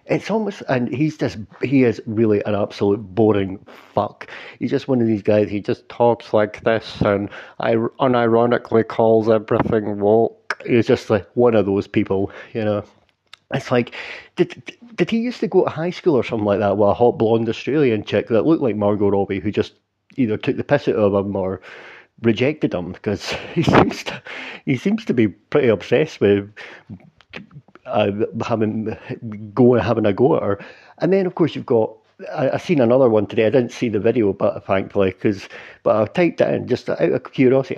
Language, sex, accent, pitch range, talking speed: English, male, British, 105-130 Hz, 195 wpm